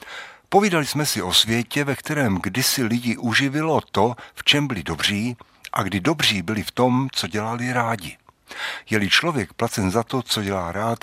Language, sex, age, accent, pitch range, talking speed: Czech, male, 60-79, native, 105-130 Hz, 175 wpm